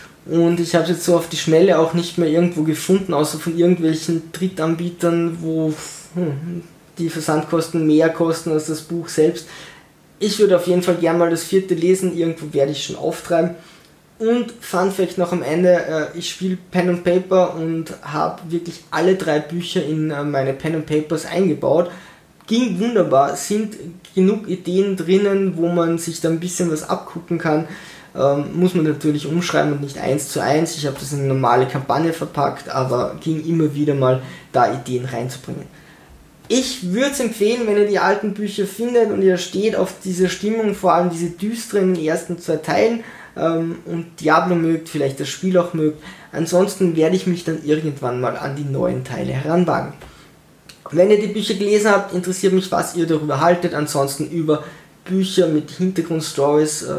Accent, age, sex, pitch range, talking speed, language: German, 20-39, male, 155-180 Hz, 175 wpm, German